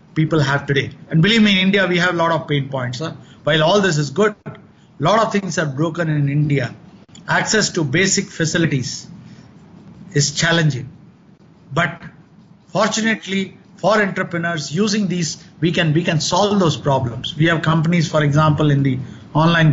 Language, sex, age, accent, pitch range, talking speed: English, male, 50-69, Indian, 150-195 Hz, 170 wpm